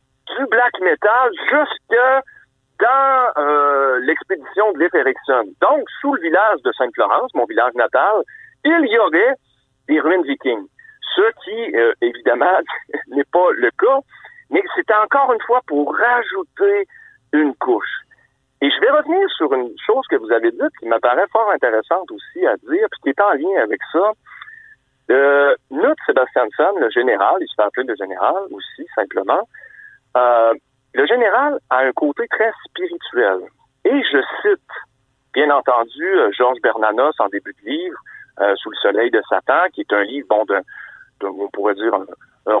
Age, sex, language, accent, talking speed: 60-79, male, French, French, 165 wpm